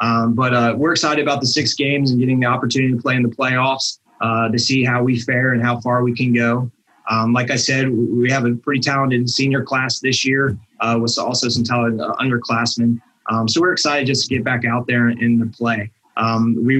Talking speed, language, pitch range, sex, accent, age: 230 wpm, English, 115-130 Hz, male, American, 20-39